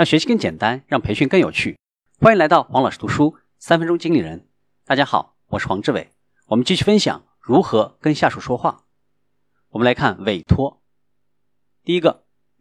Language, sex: Chinese, male